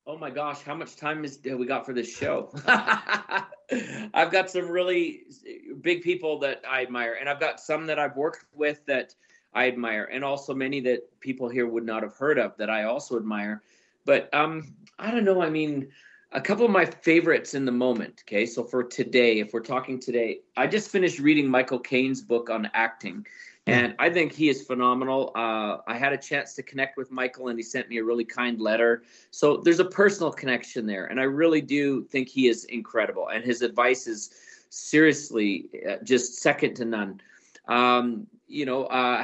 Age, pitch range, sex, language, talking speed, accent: 30-49, 120-150 Hz, male, English, 195 wpm, American